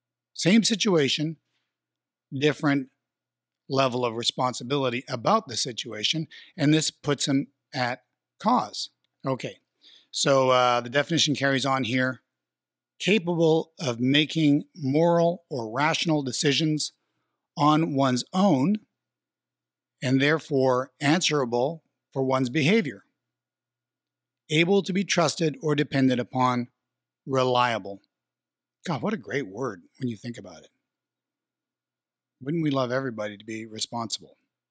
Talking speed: 110 wpm